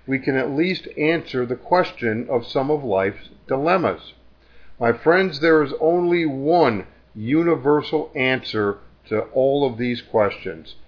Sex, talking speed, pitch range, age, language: male, 140 wpm, 115-165 Hz, 50-69, English